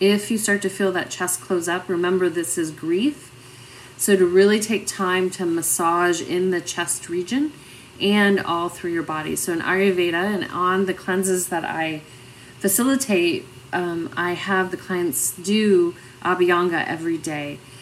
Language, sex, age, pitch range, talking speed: English, female, 30-49, 175-205 Hz, 160 wpm